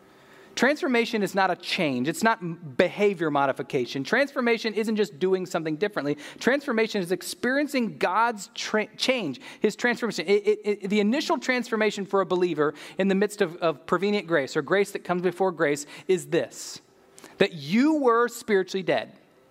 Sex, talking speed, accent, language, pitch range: male, 150 wpm, American, Russian, 180-245 Hz